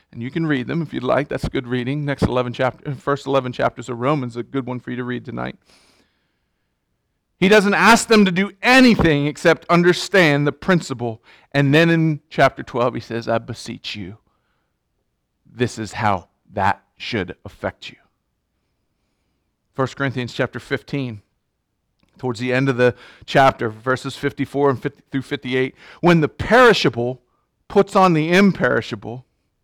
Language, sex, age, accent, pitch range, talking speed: English, male, 40-59, American, 125-190 Hz, 155 wpm